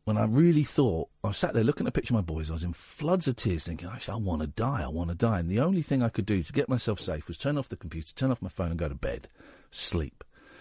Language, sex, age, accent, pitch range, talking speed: English, male, 50-69, British, 90-130 Hz, 315 wpm